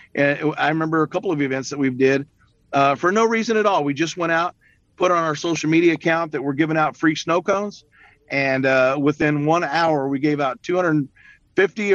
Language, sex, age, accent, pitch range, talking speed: English, male, 40-59, American, 145-175 Hz, 205 wpm